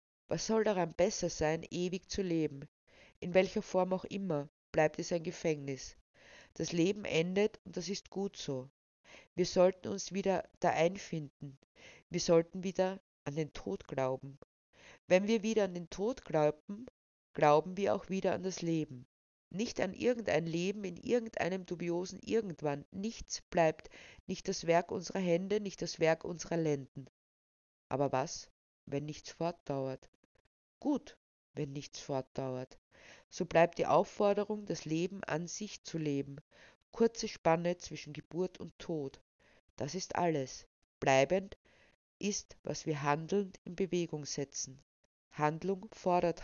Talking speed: 140 wpm